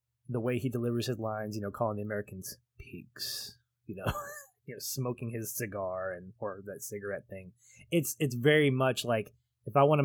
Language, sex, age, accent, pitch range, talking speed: English, male, 20-39, American, 110-130 Hz, 190 wpm